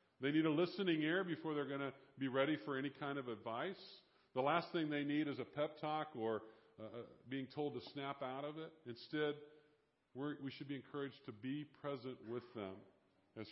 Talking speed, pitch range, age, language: 205 wpm, 120-155 Hz, 50-69, English